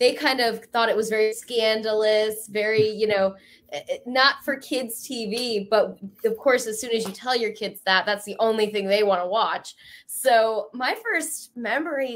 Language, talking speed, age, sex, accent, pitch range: English, 190 wpm, 10-29, female, American, 205-250 Hz